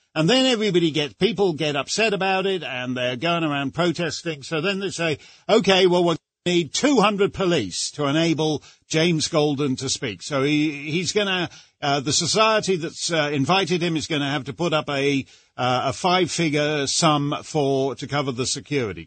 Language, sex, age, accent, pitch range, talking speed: English, male, 50-69, British, 140-185 Hz, 195 wpm